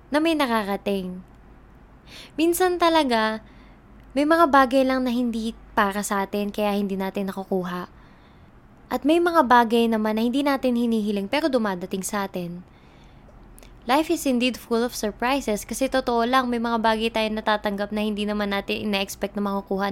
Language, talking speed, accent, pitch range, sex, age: English, 155 wpm, Filipino, 200-250 Hz, female, 20-39